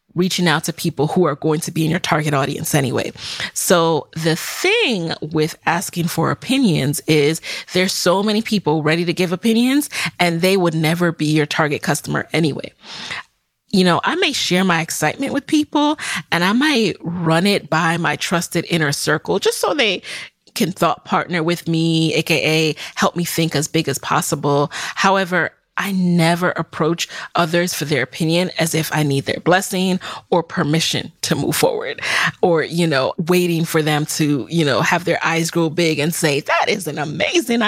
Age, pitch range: 30-49, 160-195 Hz